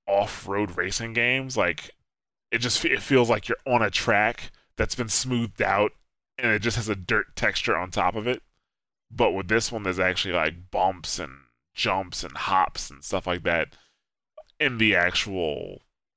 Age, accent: 20-39, American